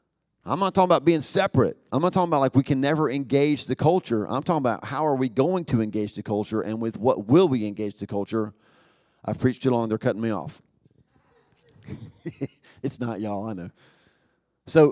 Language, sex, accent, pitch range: English, male, American, 115-155 Hz